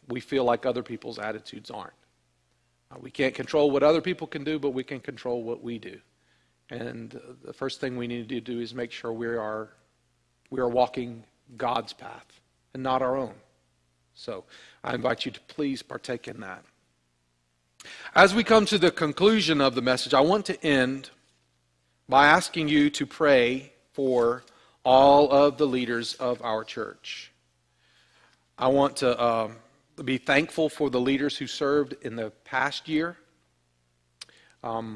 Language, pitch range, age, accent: English, 110-140 Hz, 40-59, American